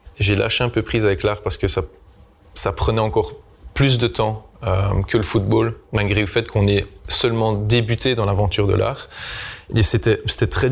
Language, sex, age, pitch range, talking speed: French, male, 20-39, 95-110 Hz, 195 wpm